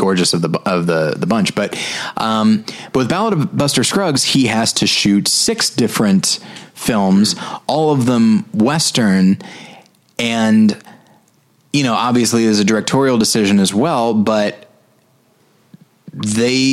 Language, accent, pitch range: English, American, 105-145 Hz